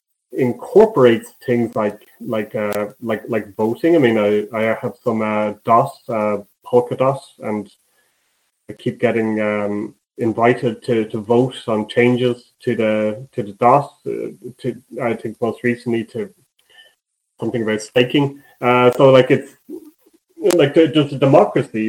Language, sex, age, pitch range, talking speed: English, male, 30-49, 115-140 Hz, 145 wpm